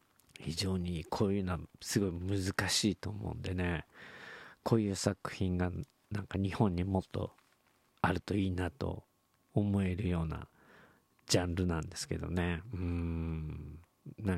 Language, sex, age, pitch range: Japanese, male, 50-69, 85-110 Hz